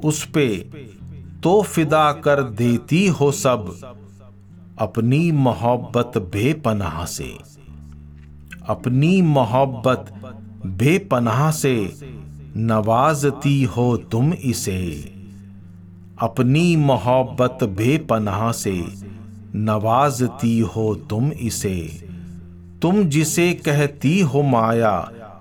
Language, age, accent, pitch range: Hindi, 50-69, native, 95-145 Hz